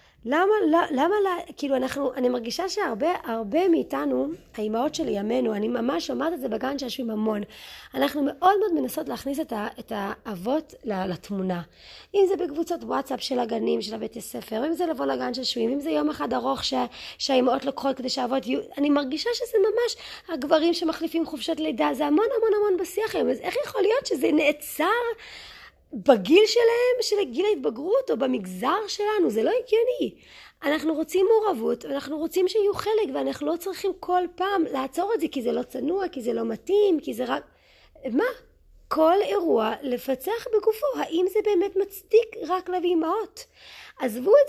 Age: 30-49